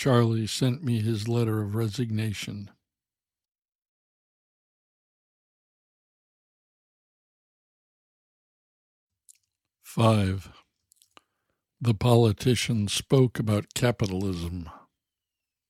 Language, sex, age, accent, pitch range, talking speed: English, male, 60-79, American, 100-120 Hz, 50 wpm